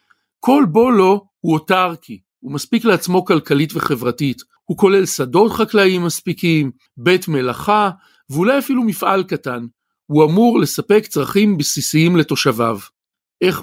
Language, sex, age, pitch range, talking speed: Hebrew, male, 50-69, 150-215 Hz, 120 wpm